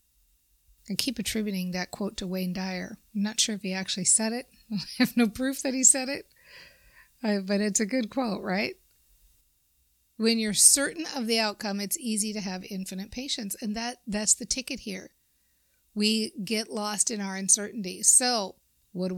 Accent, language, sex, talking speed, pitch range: American, English, female, 180 wpm, 185-225 Hz